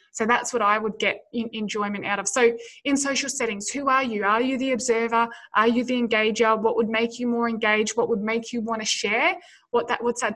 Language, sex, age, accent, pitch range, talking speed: English, female, 20-39, Australian, 220-265 Hz, 220 wpm